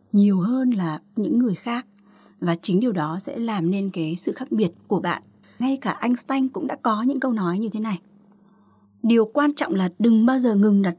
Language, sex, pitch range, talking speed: Vietnamese, female, 175-235 Hz, 220 wpm